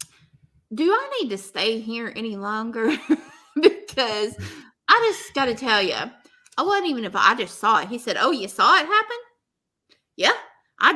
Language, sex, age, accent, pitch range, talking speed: English, female, 30-49, American, 220-335 Hz, 170 wpm